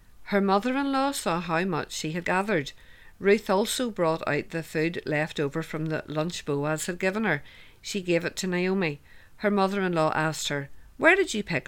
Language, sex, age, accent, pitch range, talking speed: English, female, 50-69, Irish, 155-205 Hz, 185 wpm